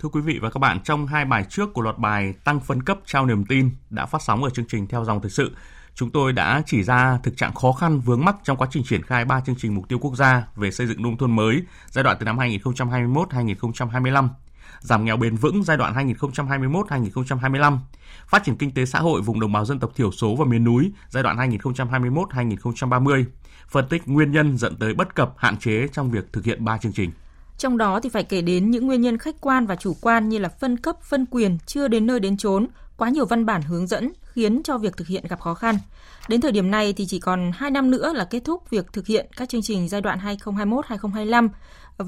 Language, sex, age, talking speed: Vietnamese, male, 20-39, 240 wpm